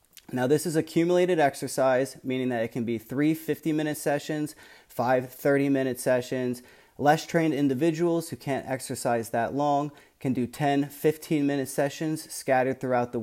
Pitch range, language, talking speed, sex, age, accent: 125-150 Hz, English, 140 wpm, male, 30-49, American